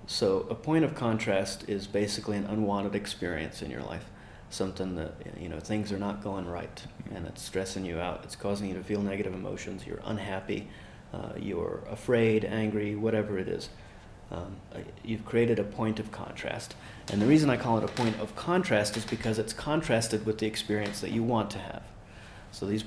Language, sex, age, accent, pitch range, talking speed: English, male, 30-49, American, 100-115 Hz, 195 wpm